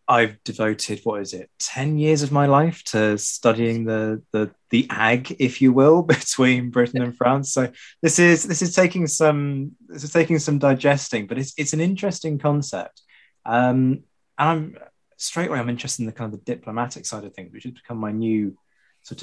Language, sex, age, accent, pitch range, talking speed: English, male, 20-39, British, 110-145 Hz, 195 wpm